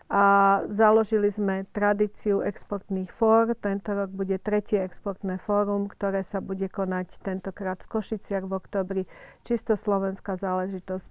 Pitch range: 190-210 Hz